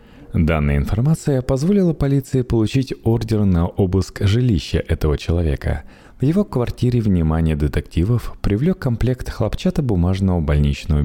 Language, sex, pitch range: Russian, male, 75-125 Hz